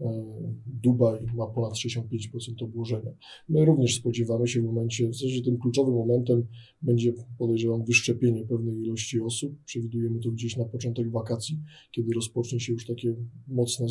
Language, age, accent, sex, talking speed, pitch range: Polish, 20-39, native, male, 145 wpm, 115-130 Hz